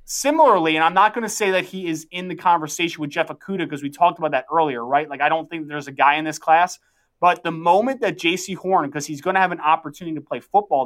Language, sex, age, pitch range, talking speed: English, male, 20-39, 150-185 Hz, 270 wpm